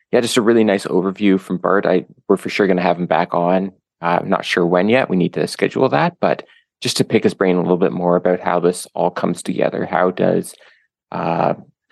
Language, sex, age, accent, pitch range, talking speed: English, male, 20-39, American, 85-95 Hz, 240 wpm